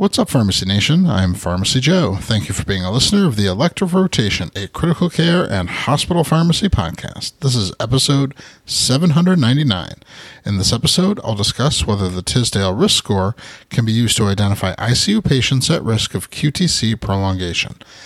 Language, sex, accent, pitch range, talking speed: English, male, American, 105-155 Hz, 165 wpm